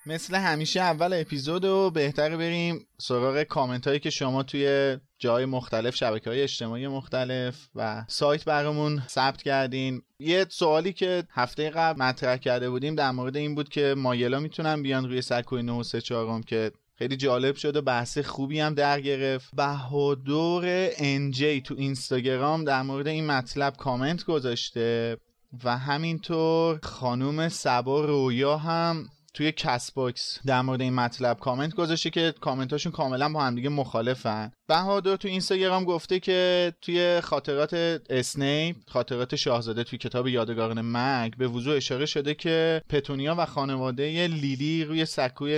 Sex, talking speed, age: male, 145 wpm, 30-49